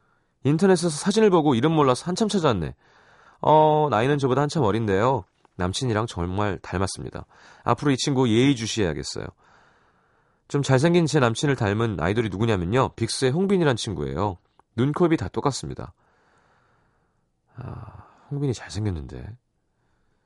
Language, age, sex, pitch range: Korean, 30-49, male, 90-145 Hz